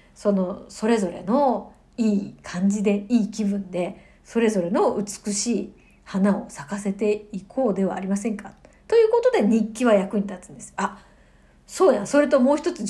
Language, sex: Japanese, female